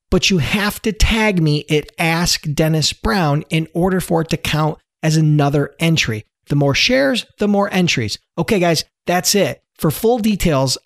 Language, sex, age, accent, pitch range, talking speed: English, male, 40-59, American, 150-195 Hz, 175 wpm